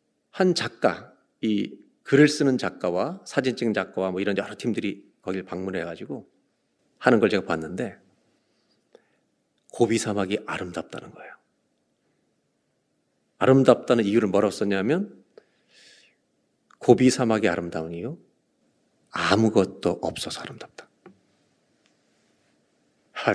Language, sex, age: Korean, male, 40-59